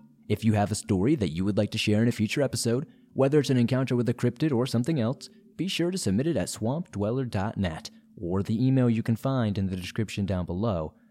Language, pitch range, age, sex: English, 105-140 Hz, 30-49, male